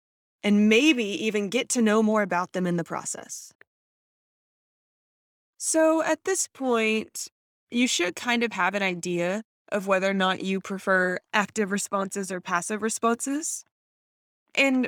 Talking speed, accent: 140 wpm, American